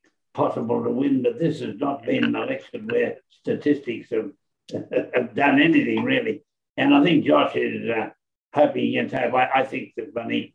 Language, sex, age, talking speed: English, male, 60-79, 170 wpm